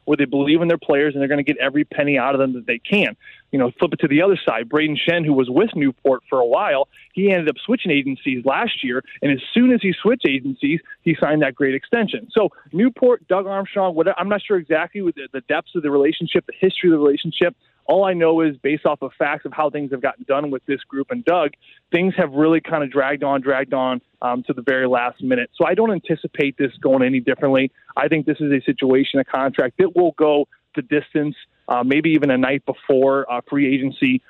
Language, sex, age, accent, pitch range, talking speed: English, male, 20-39, American, 135-170 Hz, 245 wpm